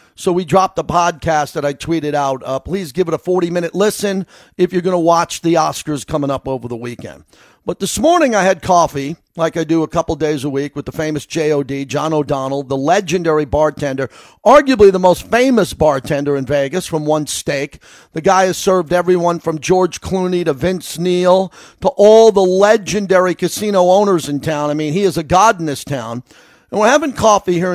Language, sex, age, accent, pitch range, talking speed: English, male, 40-59, American, 155-195 Hz, 205 wpm